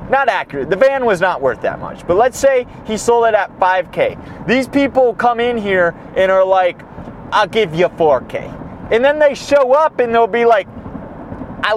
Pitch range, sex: 170-230 Hz, male